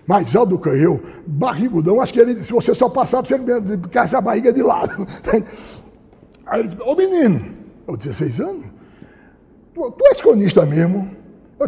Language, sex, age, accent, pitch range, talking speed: Portuguese, male, 60-79, Brazilian, 205-300 Hz, 175 wpm